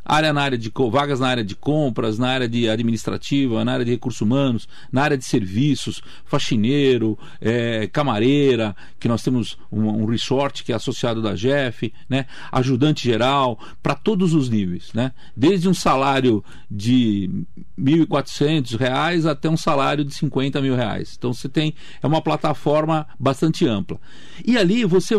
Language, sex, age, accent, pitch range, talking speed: Portuguese, male, 40-59, Brazilian, 125-170 Hz, 160 wpm